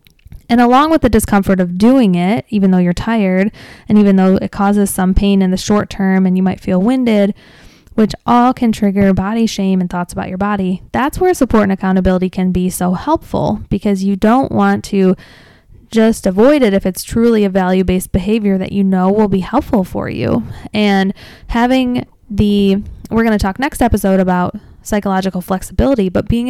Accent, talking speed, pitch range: American, 190 wpm, 190-225 Hz